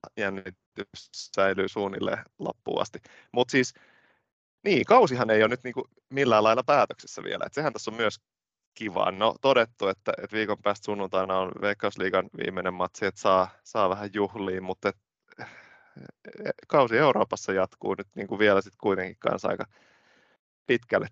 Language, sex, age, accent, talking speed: Finnish, male, 20-39, native, 145 wpm